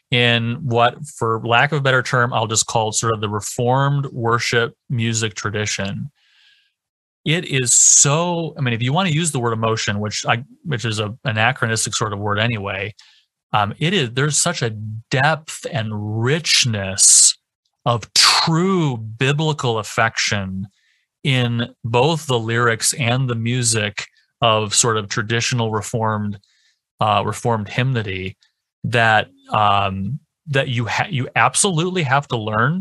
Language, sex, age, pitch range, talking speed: English, male, 30-49, 110-140 Hz, 145 wpm